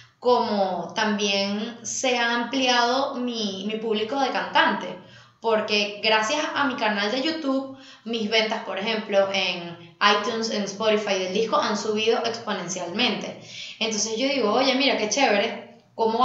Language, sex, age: English, female, 20-39